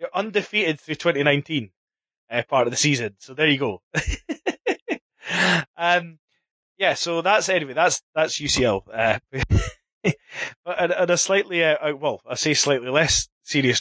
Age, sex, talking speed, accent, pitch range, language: 20-39, male, 145 wpm, British, 125-155 Hz, English